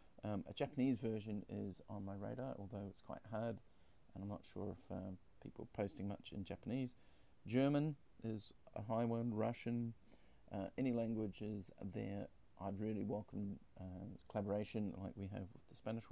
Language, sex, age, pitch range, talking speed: English, male, 40-59, 100-115 Hz, 165 wpm